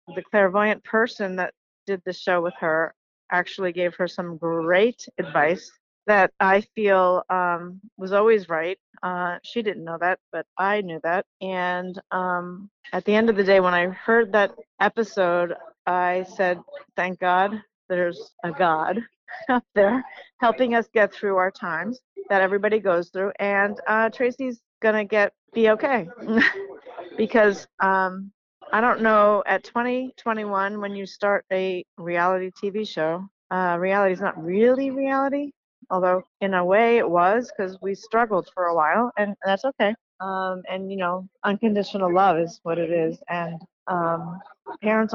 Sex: female